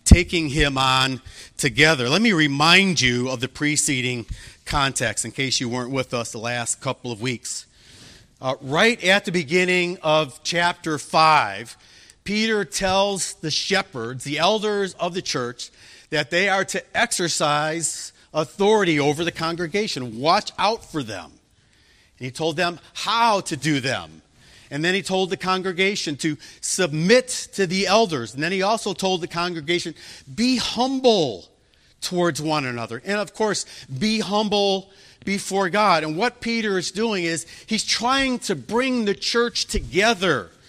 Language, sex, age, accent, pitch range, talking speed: English, male, 40-59, American, 145-205 Hz, 155 wpm